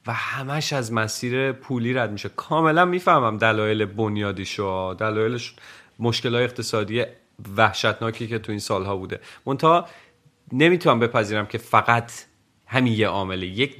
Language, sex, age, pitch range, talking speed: Persian, male, 40-59, 110-135 Hz, 120 wpm